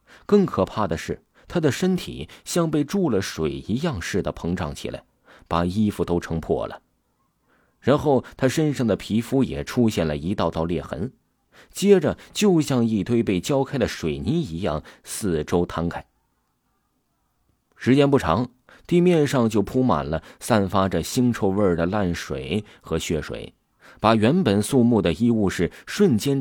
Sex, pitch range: male, 80-120 Hz